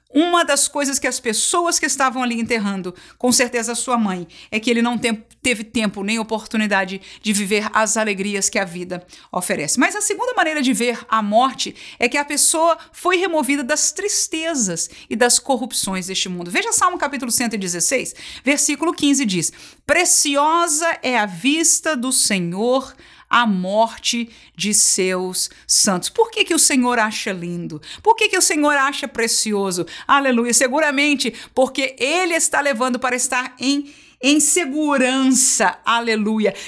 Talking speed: 155 wpm